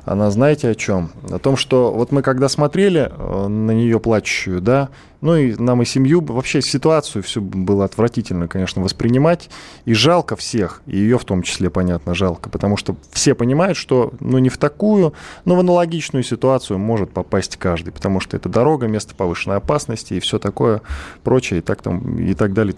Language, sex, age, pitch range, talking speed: Russian, male, 20-39, 90-130 Hz, 180 wpm